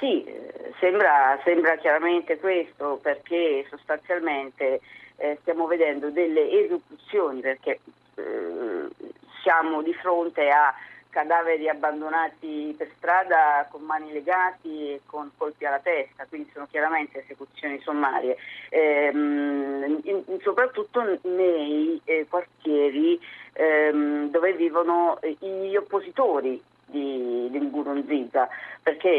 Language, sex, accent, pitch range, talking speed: Italian, female, native, 145-195 Hz, 90 wpm